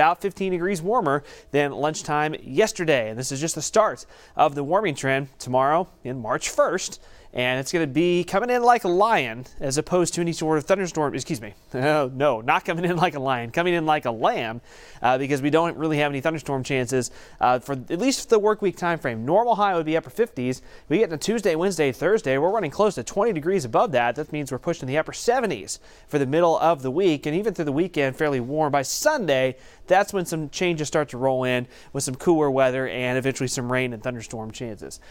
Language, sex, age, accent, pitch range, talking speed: English, male, 30-49, American, 130-170 Hz, 220 wpm